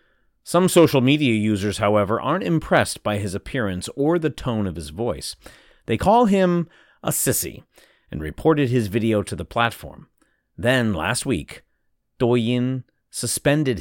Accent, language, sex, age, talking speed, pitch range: American, English, male, 40-59, 145 wpm, 100-140 Hz